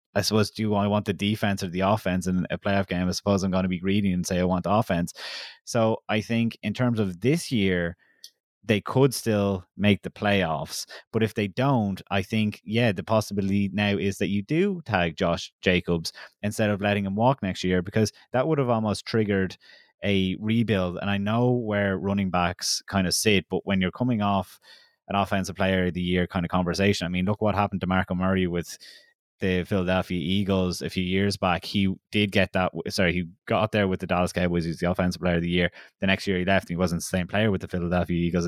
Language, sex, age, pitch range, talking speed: English, male, 20-39, 90-110 Hz, 230 wpm